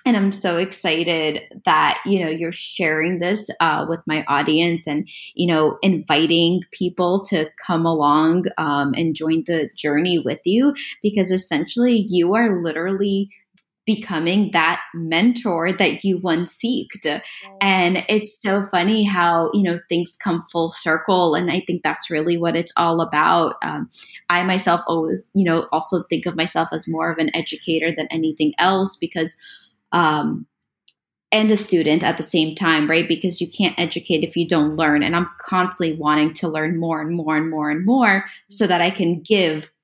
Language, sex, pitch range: English, female, 160-190 Hz